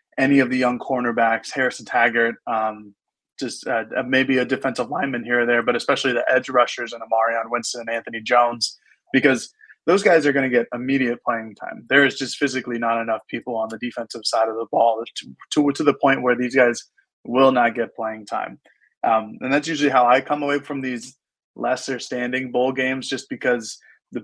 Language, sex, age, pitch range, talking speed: English, male, 20-39, 115-135 Hz, 205 wpm